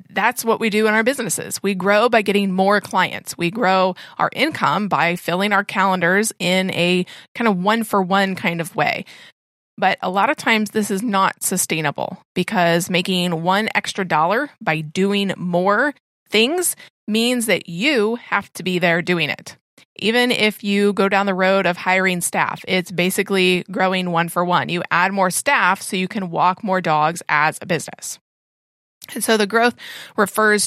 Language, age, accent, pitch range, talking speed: English, 30-49, American, 175-215 Hz, 180 wpm